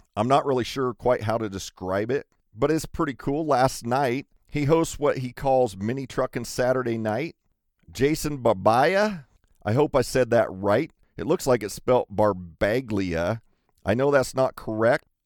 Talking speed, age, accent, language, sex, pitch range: 170 wpm, 40-59, American, English, male, 110-135 Hz